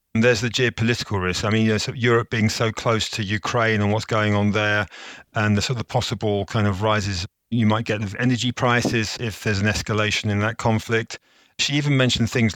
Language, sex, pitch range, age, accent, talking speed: English, male, 105-125 Hz, 40-59, British, 215 wpm